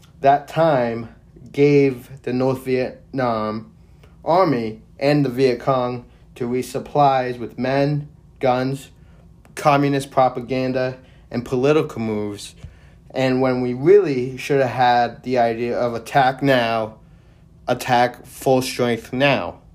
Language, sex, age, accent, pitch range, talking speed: English, male, 30-49, American, 120-140 Hz, 110 wpm